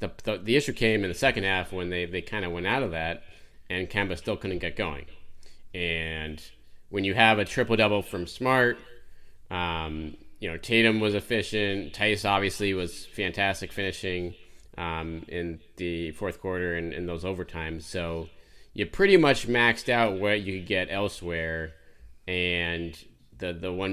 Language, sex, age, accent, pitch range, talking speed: English, male, 30-49, American, 90-105 Hz, 170 wpm